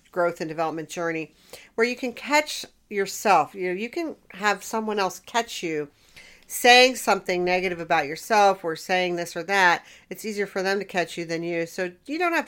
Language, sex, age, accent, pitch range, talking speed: English, female, 50-69, American, 175-230 Hz, 195 wpm